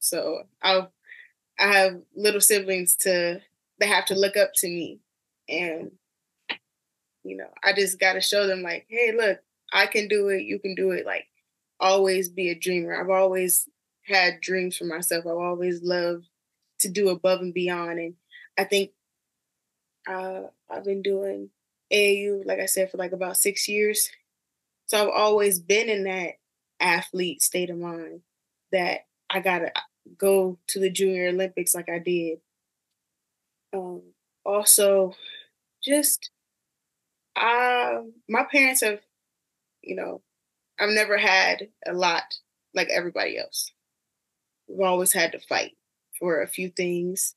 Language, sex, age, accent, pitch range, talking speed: English, female, 10-29, American, 180-205 Hz, 150 wpm